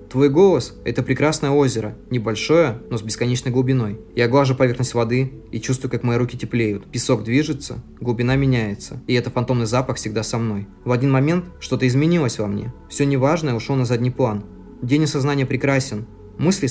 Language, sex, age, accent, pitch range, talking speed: Russian, male, 20-39, native, 115-135 Hz, 170 wpm